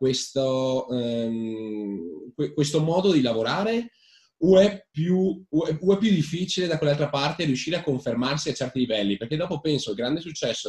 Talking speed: 175 wpm